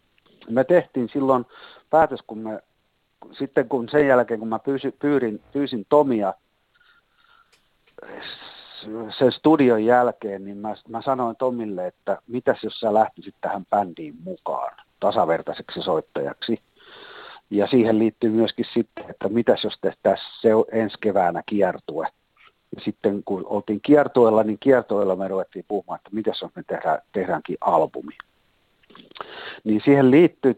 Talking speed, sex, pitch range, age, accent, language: 130 wpm, male, 105-130 Hz, 50-69, native, Finnish